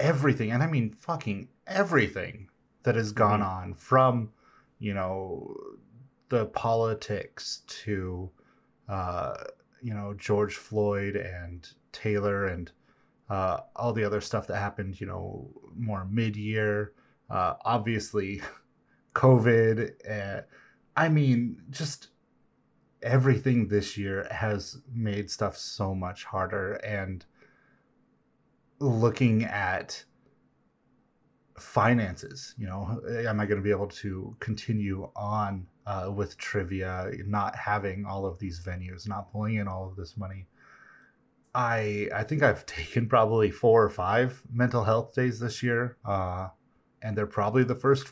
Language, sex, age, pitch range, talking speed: English, male, 30-49, 100-125 Hz, 125 wpm